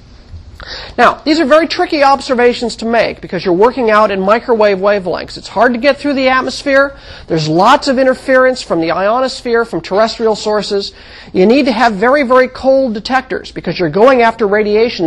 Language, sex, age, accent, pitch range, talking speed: English, male, 40-59, American, 185-250 Hz, 180 wpm